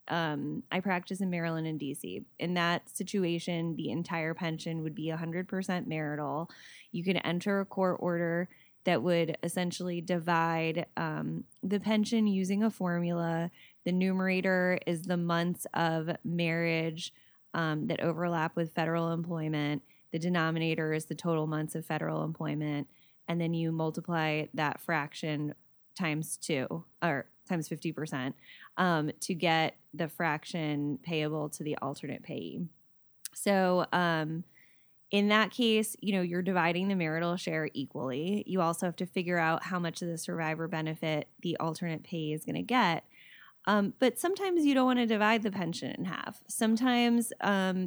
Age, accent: 10-29, American